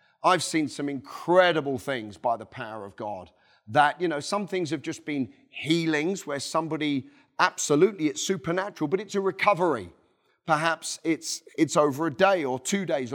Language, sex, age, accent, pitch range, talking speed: English, male, 40-59, British, 135-170 Hz, 170 wpm